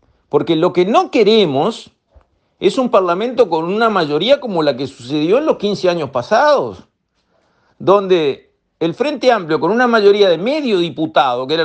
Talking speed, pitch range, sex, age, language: 165 wpm, 165-275 Hz, male, 50-69, Spanish